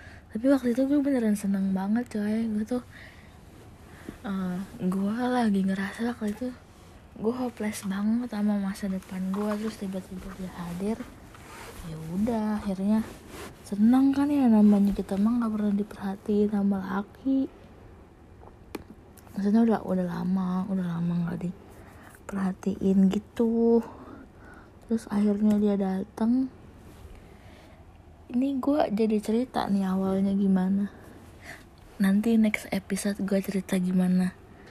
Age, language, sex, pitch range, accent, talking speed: 20-39, Indonesian, female, 185-220 Hz, native, 115 wpm